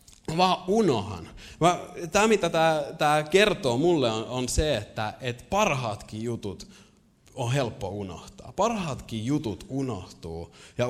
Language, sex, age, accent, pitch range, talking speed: Finnish, male, 20-39, native, 100-150 Hz, 115 wpm